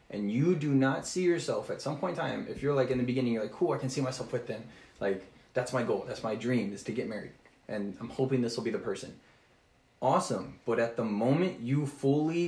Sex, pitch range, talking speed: male, 105-130 Hz, 250 wpm